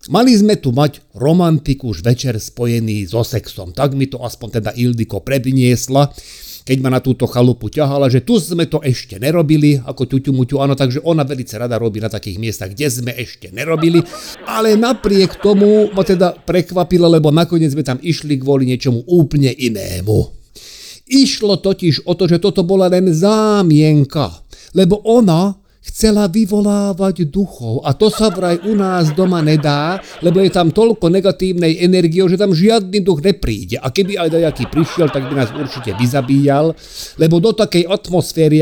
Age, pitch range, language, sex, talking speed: 50-69, 125-180 Hz, Slovak, male, 165 wpm